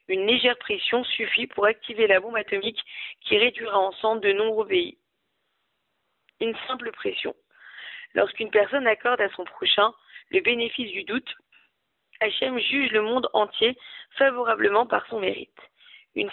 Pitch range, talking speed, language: 220-360 Hz, 140 wpm, French